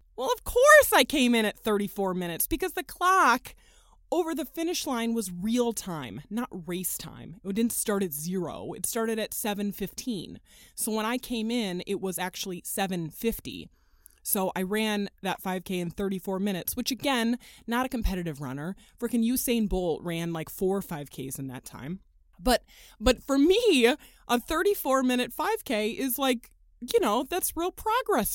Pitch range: 190-265 Hz